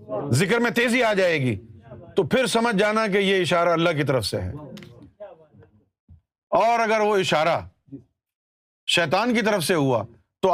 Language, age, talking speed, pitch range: Urdu, 50-69, 160 wpm, 130-200 Hz